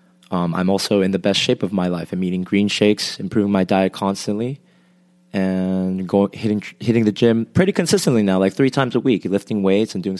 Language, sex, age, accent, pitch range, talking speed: English, male, 20-39, American, 90-110 Hz, 210 wpm